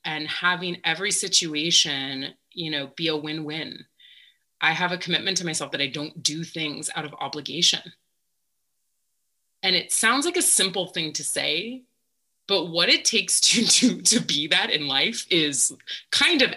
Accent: American